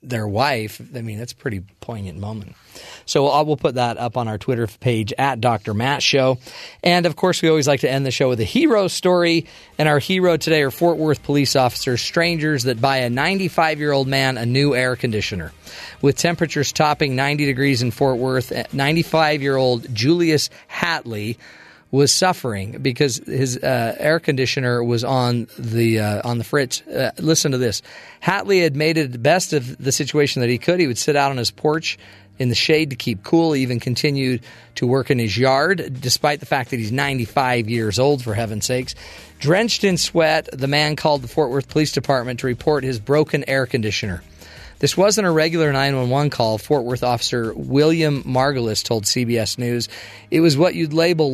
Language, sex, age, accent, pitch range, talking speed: English, male, 40-59, American, 120-150 Hz, 200 wpm